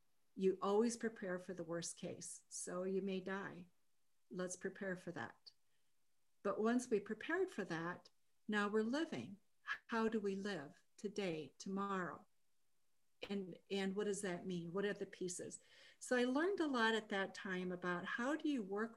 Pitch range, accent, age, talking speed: 180-210 Hz, American, 50-69, 170 wpm